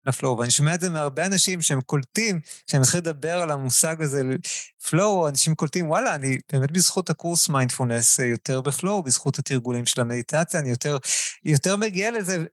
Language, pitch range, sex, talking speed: Hebrew, 140-175 Hz, male, 170 wpm